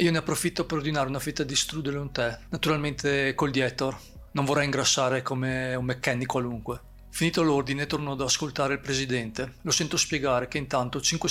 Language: Italian